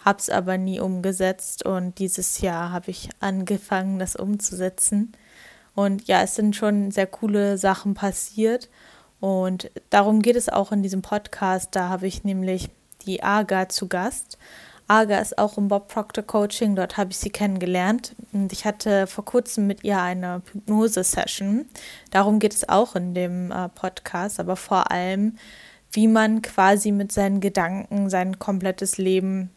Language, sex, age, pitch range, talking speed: German, female, 10-29, 190-210 Hz, 155 wpm